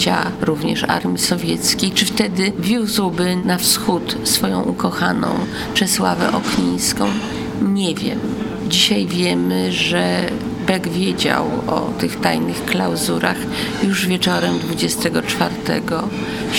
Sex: female